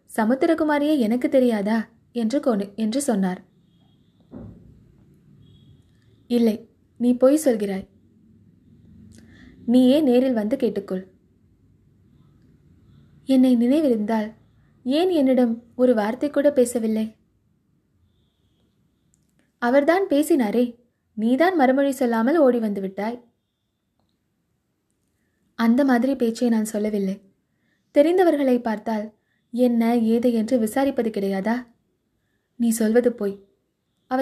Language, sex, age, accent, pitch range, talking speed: Tamil, female, 20-39, native, 195-255 Hz, 80 wpm